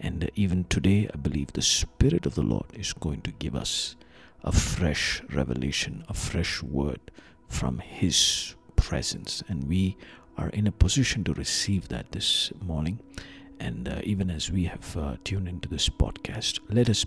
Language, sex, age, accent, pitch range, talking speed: English, male, 50-69, Indian, 80-95 Hz, 170 wpm